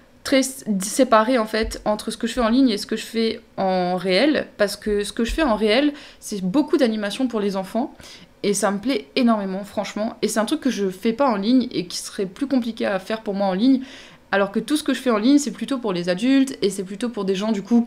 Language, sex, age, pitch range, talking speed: French, female, 20-39, 190-235 Hz, 270 wpm